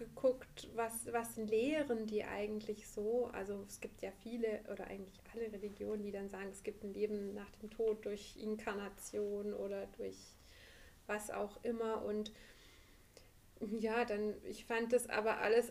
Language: German